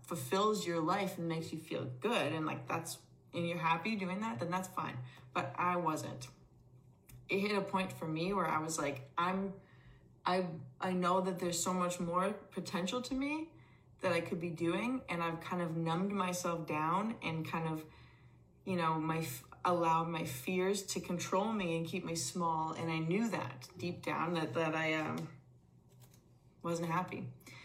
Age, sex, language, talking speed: 20-39, female, English, 180 wpm